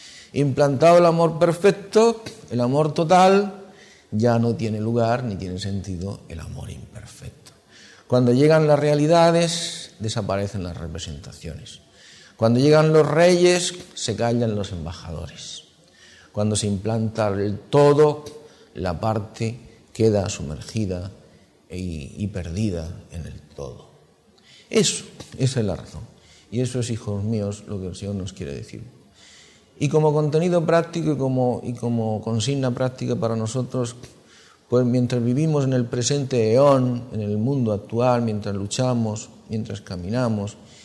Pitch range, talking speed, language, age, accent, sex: 105-140 Hz, 135 wpm, Spanish, 50-69, Spanish, male